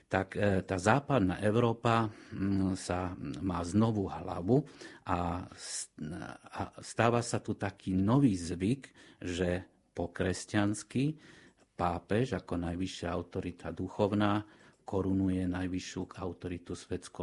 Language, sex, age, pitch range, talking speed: Slovak, male, 50-69, 90-105 Hz, 90 wpm